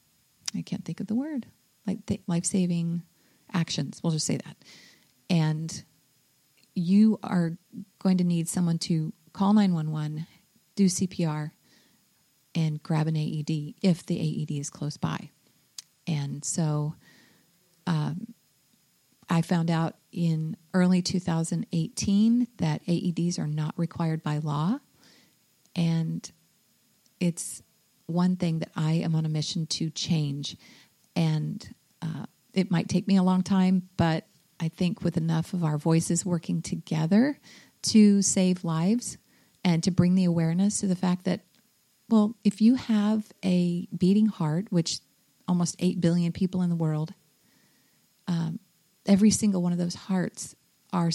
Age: 40-59